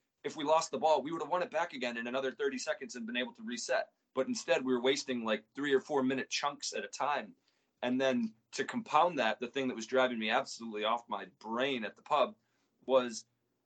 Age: 30-49